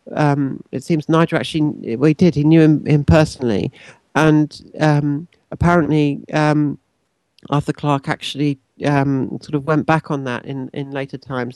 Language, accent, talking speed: English, British, 160 wpm